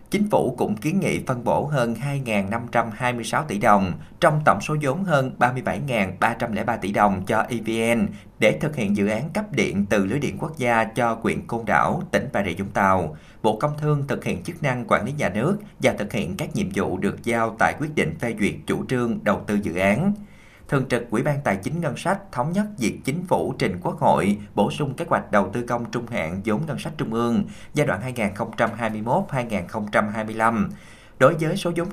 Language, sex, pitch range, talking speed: Vietnamese, male, 110-155 Hz, 205 wpm